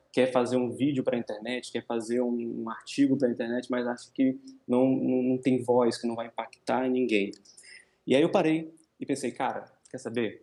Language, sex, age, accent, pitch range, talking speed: Portuguese, male, 20-39, Brazilian, 125-150 Hz, 220 wpm